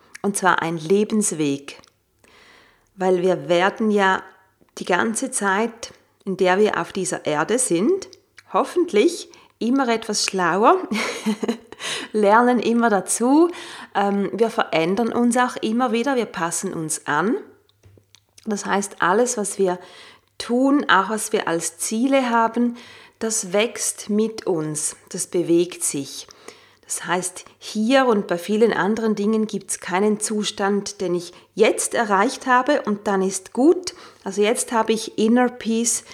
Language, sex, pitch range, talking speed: German, female, 185-235 Hz, 135 wpm